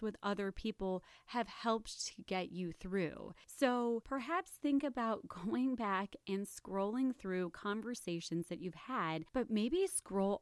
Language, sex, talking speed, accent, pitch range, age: English, female, 145 wpm, American, 175-210 Hz, 30-49